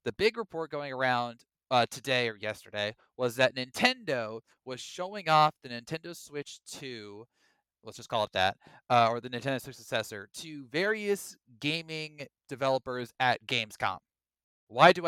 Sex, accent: male, American